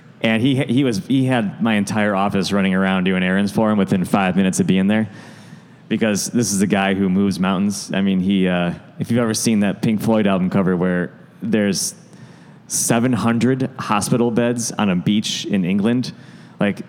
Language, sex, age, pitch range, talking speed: English, male, 20-39, 100-125 Hz, 190 wpm